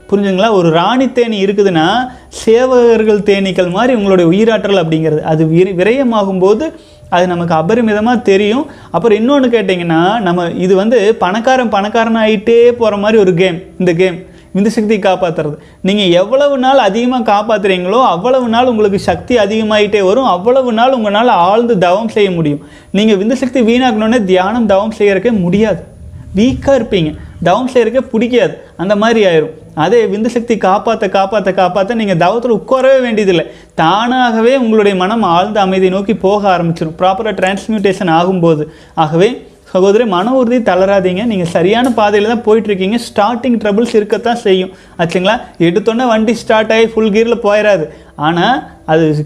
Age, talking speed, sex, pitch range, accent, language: 30-49, 140 wpm, male, 185-230 Hz, native, Tamil